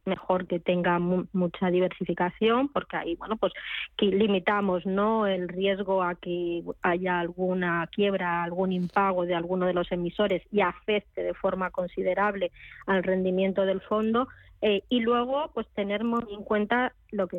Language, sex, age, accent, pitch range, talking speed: Spanish, female, 20-39, Spanish, 175-205 Hz, 150 wpm